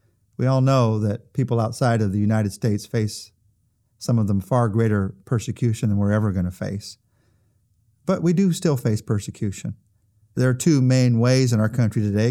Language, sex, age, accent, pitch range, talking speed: English, male, 40-59, American, 105-130 Hz, 185 wpm